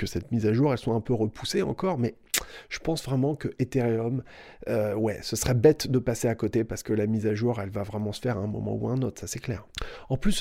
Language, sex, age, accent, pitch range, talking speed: French, male, 30-49, French, 115-155 Hz, 285 wpm